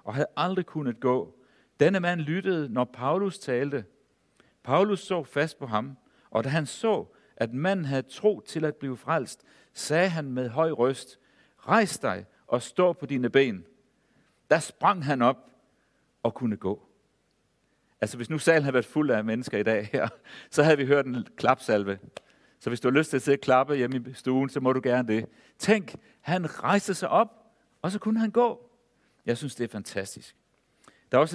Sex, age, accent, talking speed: male, 60-79, native, 190 wpm